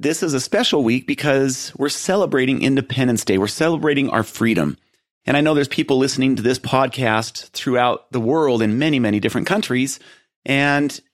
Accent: American